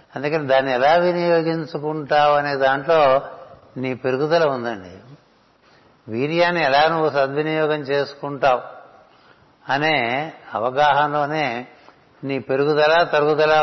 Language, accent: Telugu, native